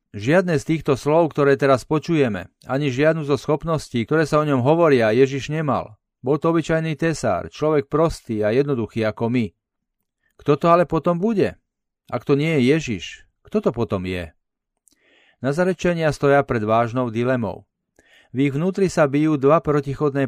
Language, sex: Slovak, male